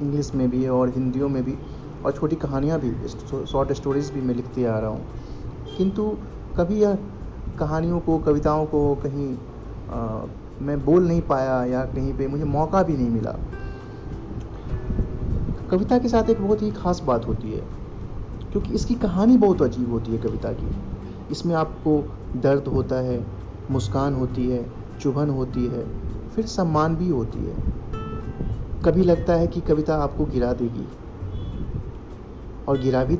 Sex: male